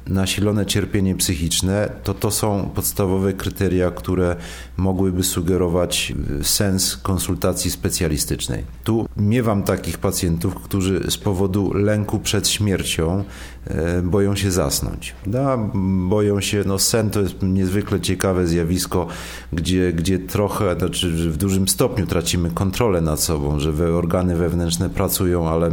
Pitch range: 85-100 Hz